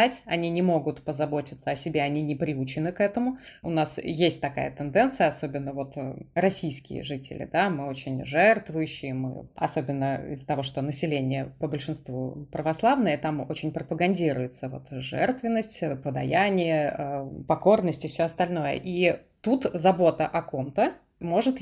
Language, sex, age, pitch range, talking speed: Russian, female, 20-39, 145-185 Hz, 135 wpm